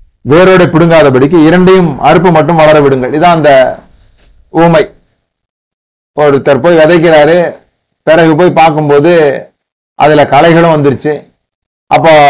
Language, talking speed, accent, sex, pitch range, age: Tamil, 100 wpm, native, male, 140-165 Hz, 30-49